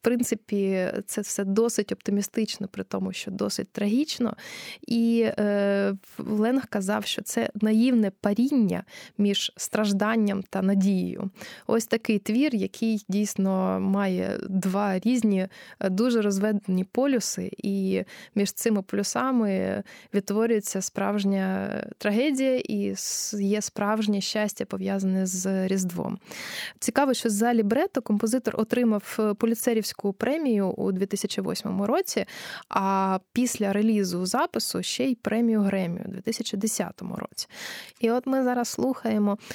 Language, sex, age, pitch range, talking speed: Ukrainian, female, 20-39, 195-235 Hz, 110 wpm